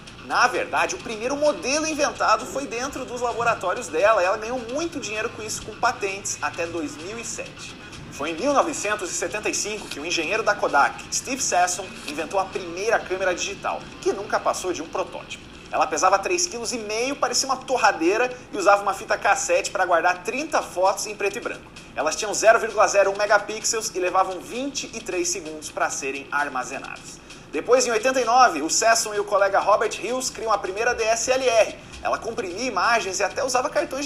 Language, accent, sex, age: Portuguese, Brazilian, male, 30-49